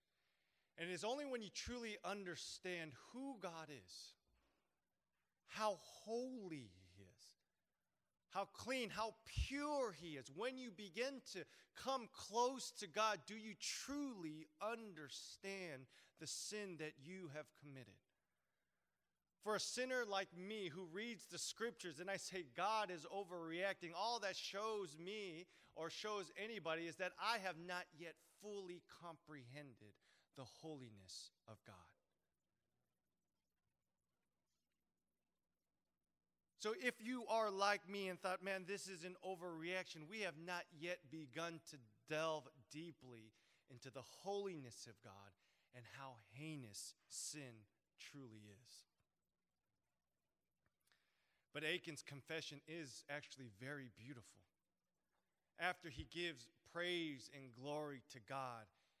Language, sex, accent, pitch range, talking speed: English, male, American, 135-200 Hz, 120 wpm